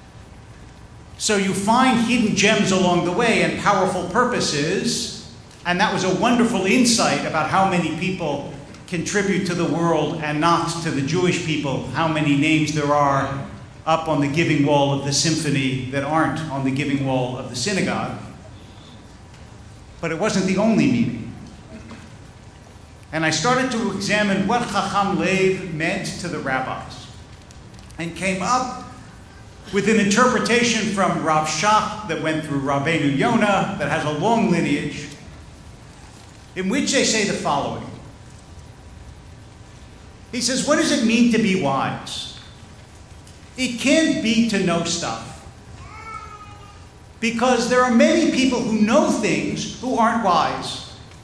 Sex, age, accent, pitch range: male, 50-69, American, 140-215 Hz